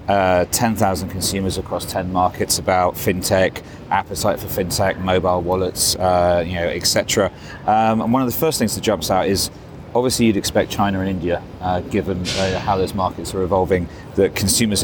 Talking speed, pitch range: 180 wpm, 95-115 Hz